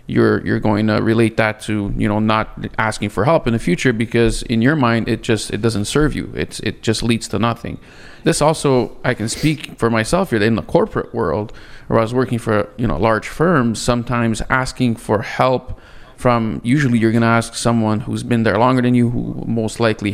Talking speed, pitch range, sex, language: 215 wpm, 110-130 Hz, male, English